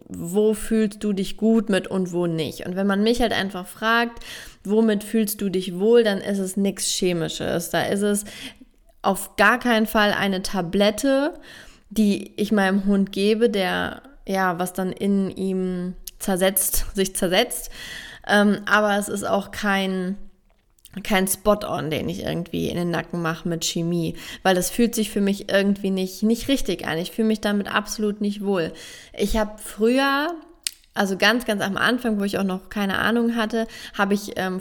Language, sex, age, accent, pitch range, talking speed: German, female, 20-39, German, 185-215 Hz, 175 wpm